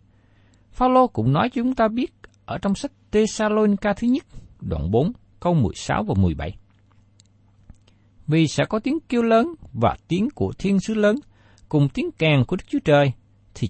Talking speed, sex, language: 190 wpm, male, Vietnamese